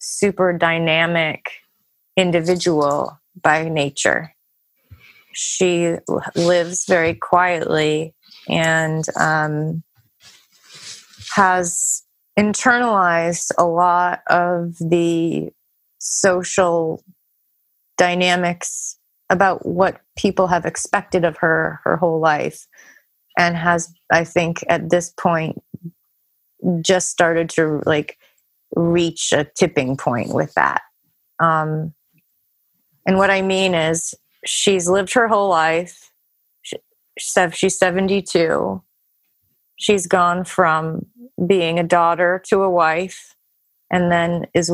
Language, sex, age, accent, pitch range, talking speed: English, female, 30-49, American, 165-185 Hz, 95 wpm